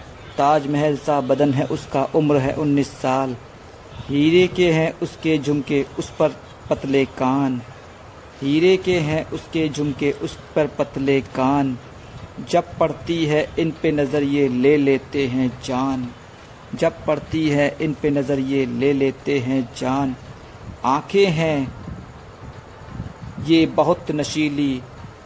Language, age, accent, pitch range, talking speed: Hindi, 50-69, native, 130-155 Hz, 130 wpm